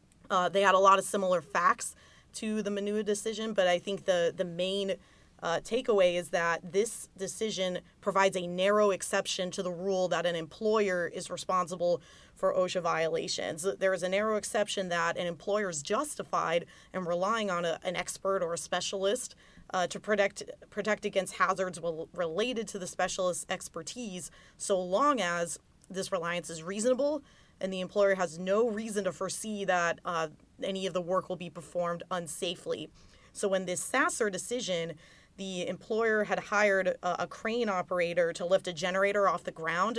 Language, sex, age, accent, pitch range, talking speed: English, female, 20-39, American, 180-205 Hz, 170 wpm